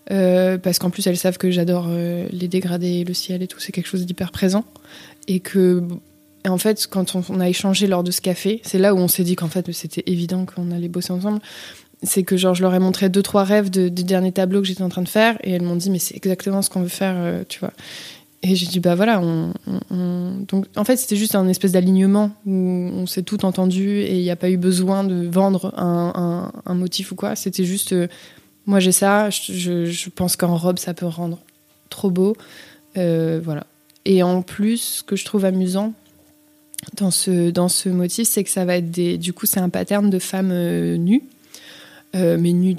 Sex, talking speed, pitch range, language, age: female, 235 wpm, 180-195 Hz, French, 20-39